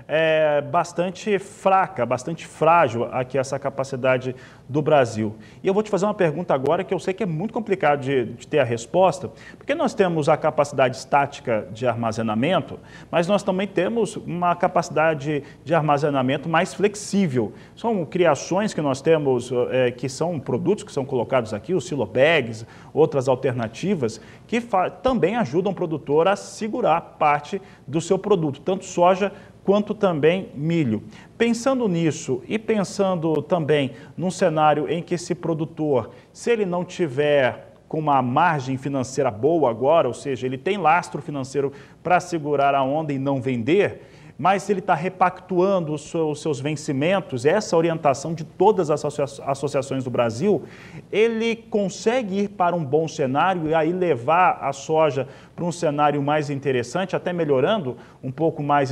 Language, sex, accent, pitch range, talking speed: Portuguese, male, Brazilian, 135-185 Hz, 155 wpm